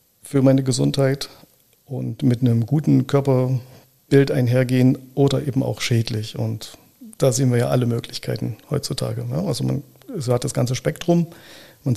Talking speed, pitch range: 140 wpm, 120-135 Hz